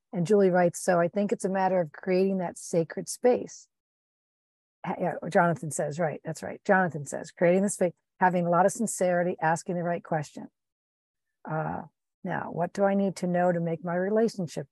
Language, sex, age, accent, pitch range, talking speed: English, female, 50-69, American, 160-185 Hz, 185 wpm